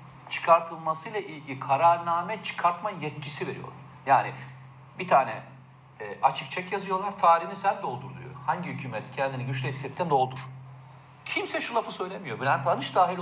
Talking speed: 130 wpm